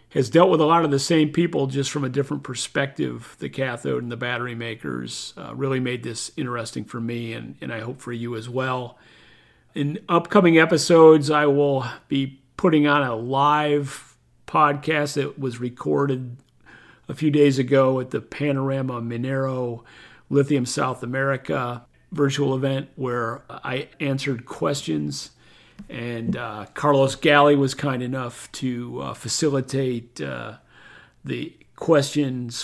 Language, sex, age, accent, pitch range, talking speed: English, male, 40-59, American, 120-145 Hz, 145 wpm